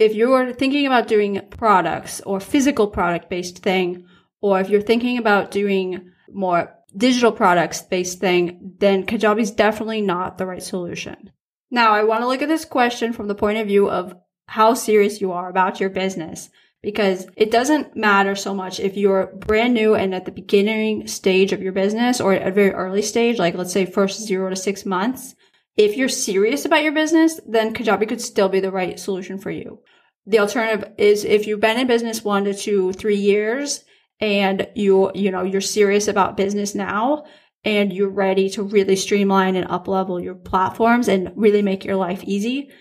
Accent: American